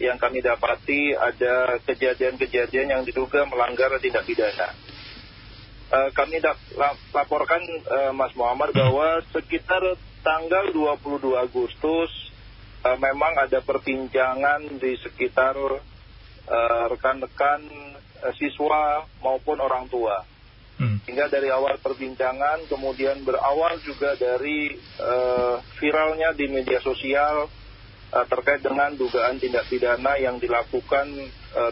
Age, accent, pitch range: 40-59, native, 120-145 Hz